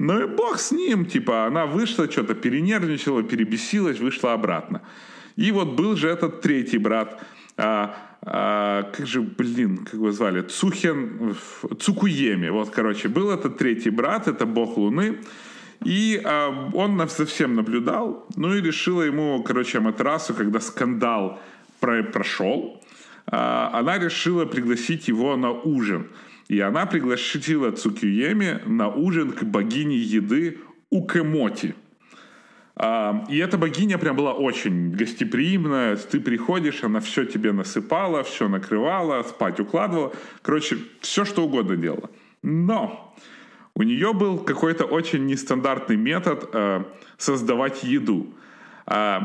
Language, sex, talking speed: Ukrainian, male, 130 wpm